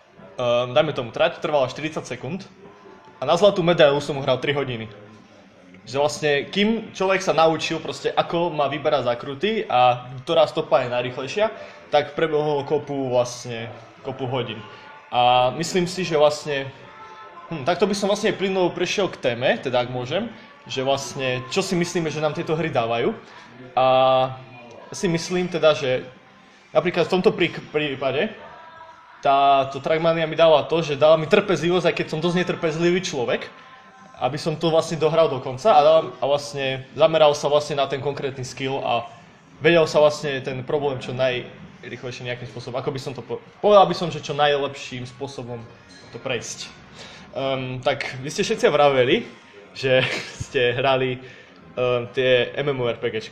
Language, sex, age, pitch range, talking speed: Slovak, male, 20-39, 130-165 Hz, 160 wpm